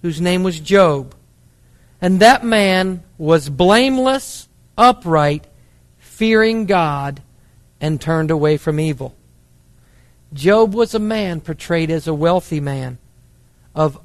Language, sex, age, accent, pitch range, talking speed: English, male, 50-69, American, 125-200 Hz, 115 wpm